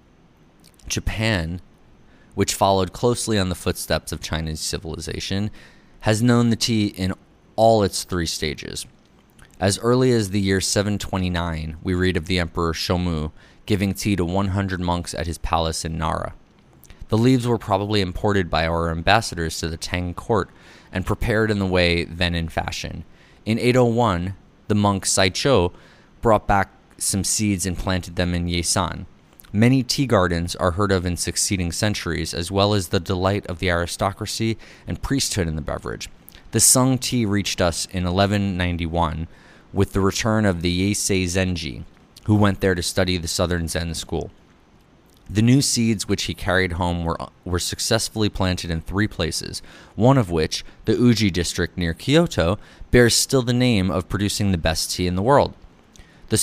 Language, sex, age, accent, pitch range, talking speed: English, male, 20-39, American, 85-105 Hz, 165 wpm